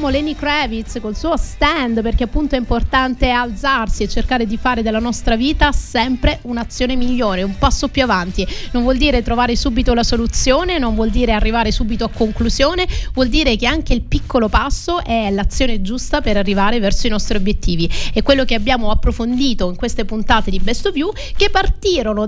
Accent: native